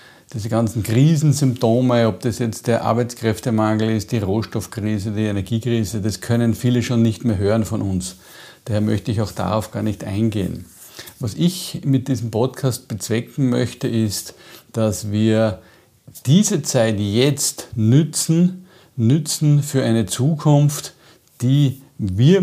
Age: 50-69